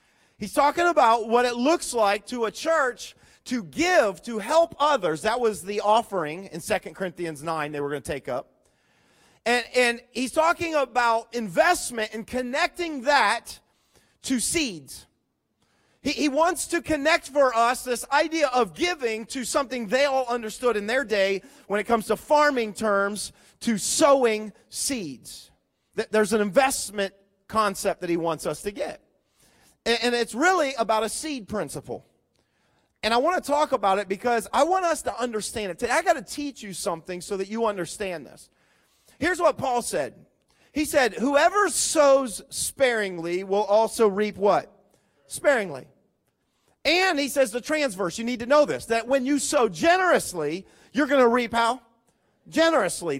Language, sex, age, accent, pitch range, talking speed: English, male, 40-59, American, 210-290 Hz, 165 wpm